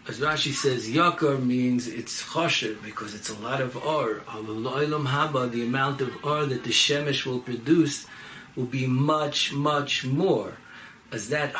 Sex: male